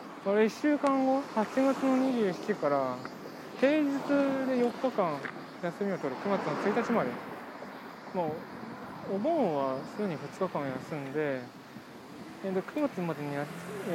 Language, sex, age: Japanese, male, 20-39